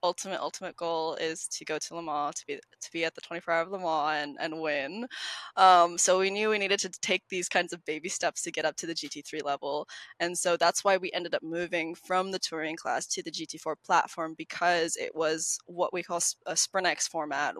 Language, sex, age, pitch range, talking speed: English, female, 20-39, 165-200 Hz, 230 wpm